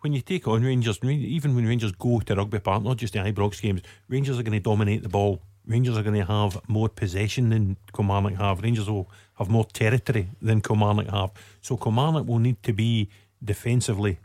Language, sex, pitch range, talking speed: English, male, 105-120 Hz, 200 wpm